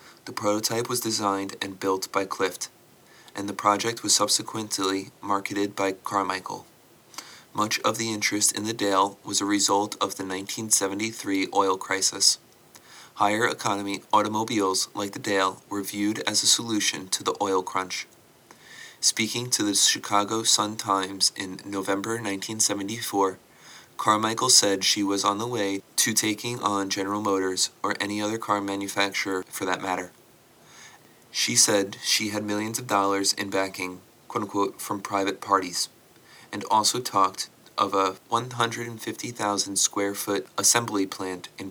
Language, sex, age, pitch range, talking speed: English, male, 30-49, 95-105 Hz, 140 wpm